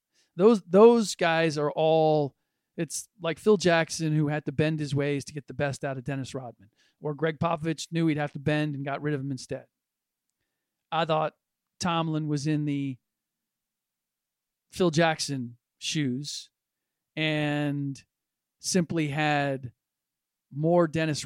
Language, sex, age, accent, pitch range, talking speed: English, male, 40-59, American, 140-160 Hz, 145 wpm